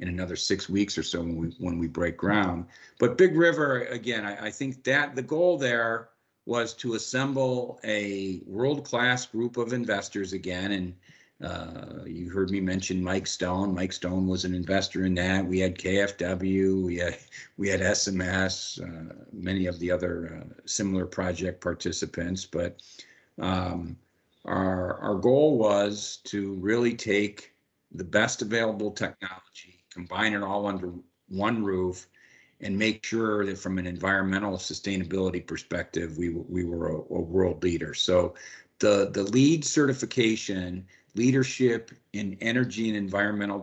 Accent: American